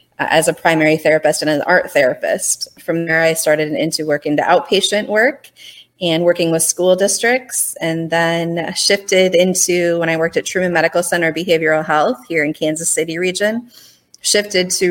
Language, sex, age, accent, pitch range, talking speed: English, female, 30-49, American, 150-170 Hz, 170 wpm